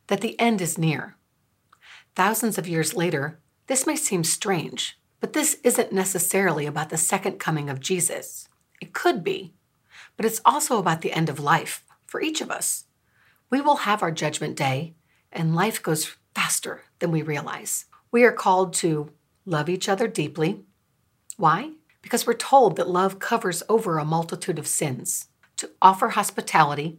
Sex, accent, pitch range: female, American, 155-210 Hz